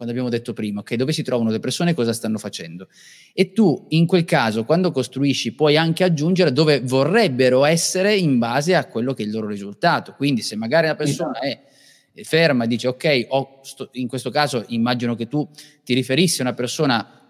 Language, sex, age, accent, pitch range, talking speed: Italian, male, 20-39, native, 125-175 Hz, 210 wpm